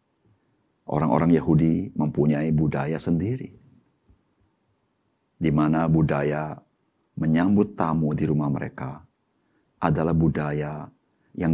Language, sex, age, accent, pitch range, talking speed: Indonesian, male, 50-69, native, 75-95 Hz, 80 wpm